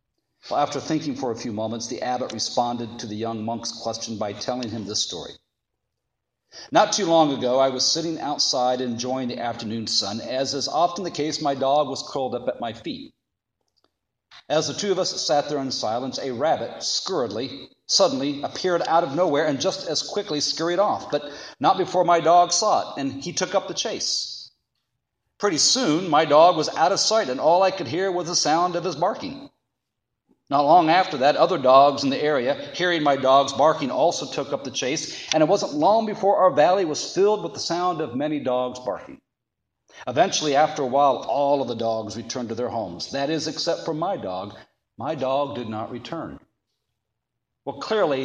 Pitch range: 125-175 Hz